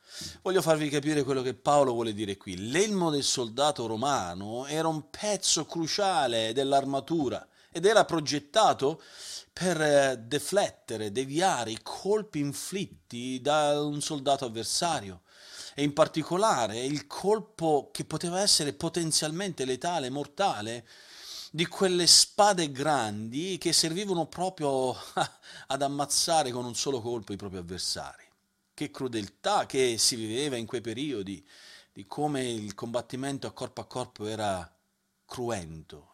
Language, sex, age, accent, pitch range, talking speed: Italian, male, 40-59, native, 115-160 Hz, 125 wpm